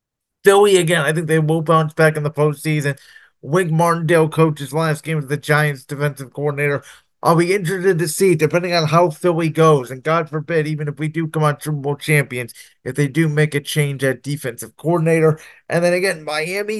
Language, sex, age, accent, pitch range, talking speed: English, male, 30-49, American, 145-175 Hz, 200 wpm